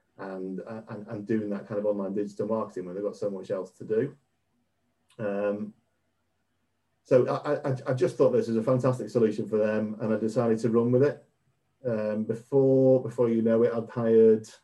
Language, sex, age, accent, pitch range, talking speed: English, male, 40-59, British, 100-115 Hz, 195 wpm